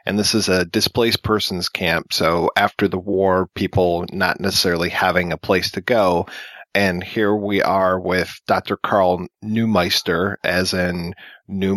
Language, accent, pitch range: English, American, 95-115 Hz